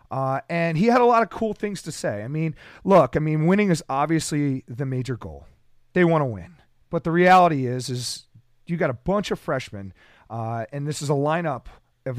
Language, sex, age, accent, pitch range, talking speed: English, male, 40-59, American, 130-175 Hz, 215 wpm